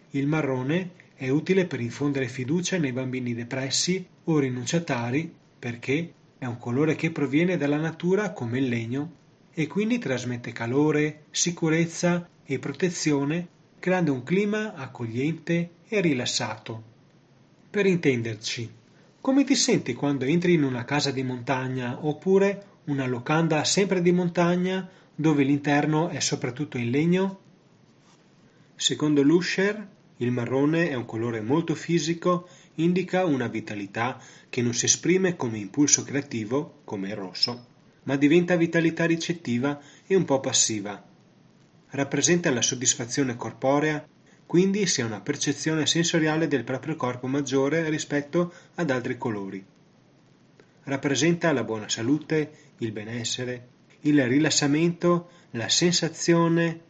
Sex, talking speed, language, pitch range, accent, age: male, 125 wpm, Italian, 130-170 Hz, native, 30-49